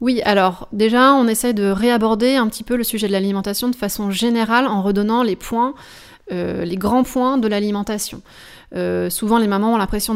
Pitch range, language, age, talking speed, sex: 195-230 Hz, French, 30-49, 190 wpm, female